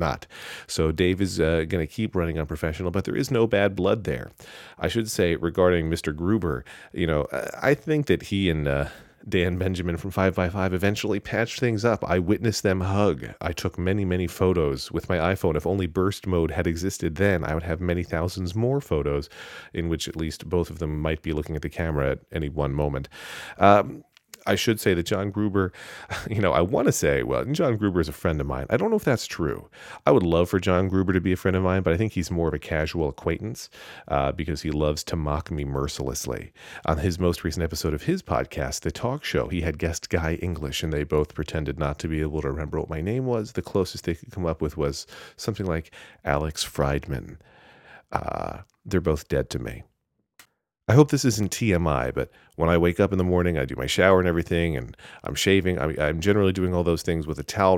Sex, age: male, 40-59